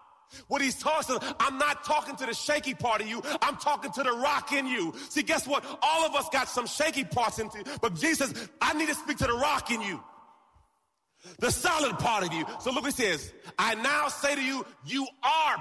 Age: 30-49